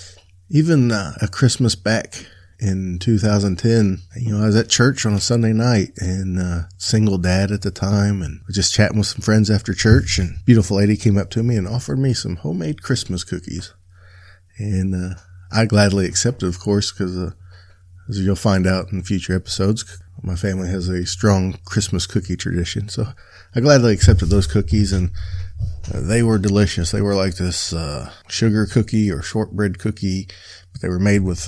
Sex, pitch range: male, 90-105 Hz